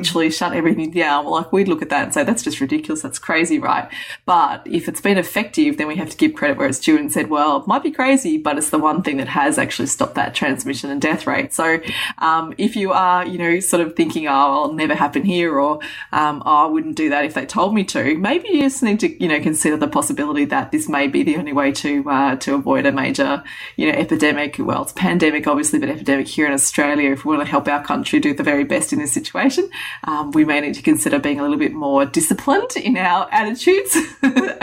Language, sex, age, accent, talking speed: English, female, 20-39, Australian, 250 wpm